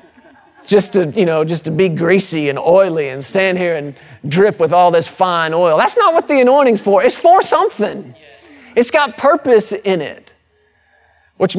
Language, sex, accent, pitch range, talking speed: English, male, American, 170-230 Hz, 180 wpm